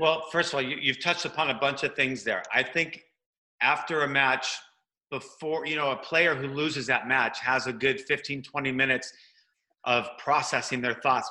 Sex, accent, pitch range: male, American, 125-155 Hz